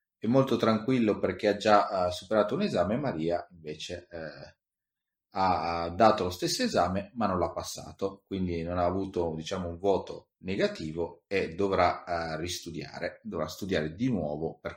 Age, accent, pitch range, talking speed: 30-49, native, 90-115 Hz, 150 wpm